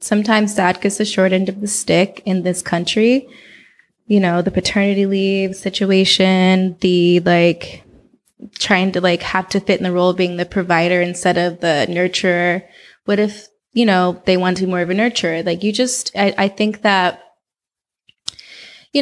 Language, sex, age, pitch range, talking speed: English, female, 20-39, 180-205 Hz, 180 wpm